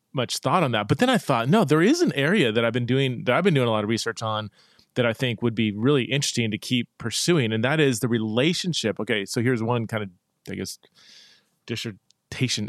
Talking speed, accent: 235 wpm, American